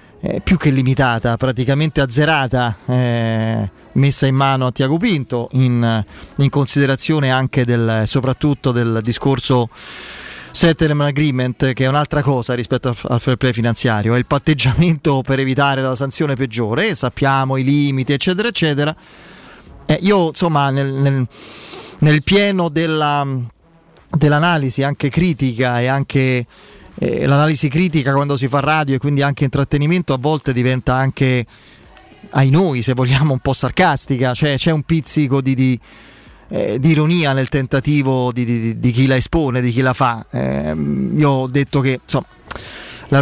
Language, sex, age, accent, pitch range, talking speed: Italian, male, 30-49, native, 125-150 Hz, 150 wpm